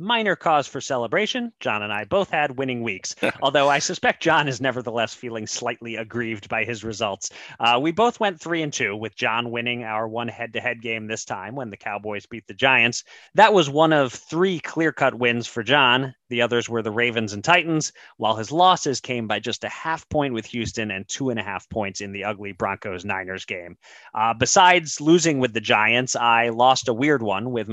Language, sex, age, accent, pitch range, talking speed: English, male, 30-49, American, 110-150 Hz, 205 wpm